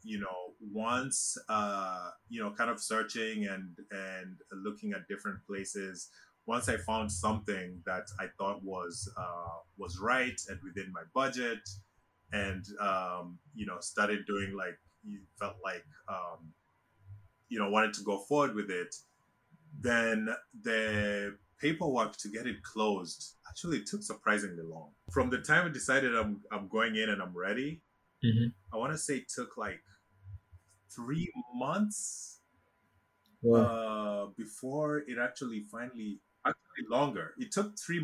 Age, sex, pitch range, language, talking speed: 20-39, male, 95-120 Hz, English, 145 wpm